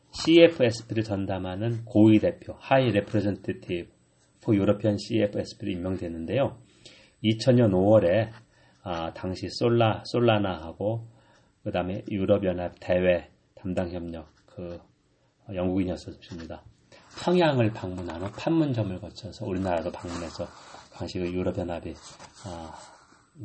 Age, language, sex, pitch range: 40-59, Korean, male, 95-120 Hz